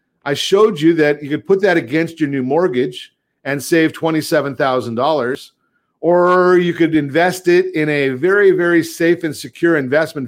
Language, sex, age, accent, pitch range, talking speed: English, male, 50-69, American, 135-170 Hz, 165 wpm